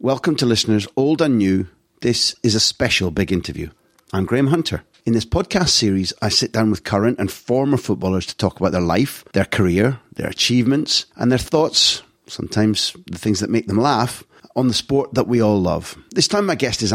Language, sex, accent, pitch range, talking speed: English, male, British, 95-135 Hz, 205 wpm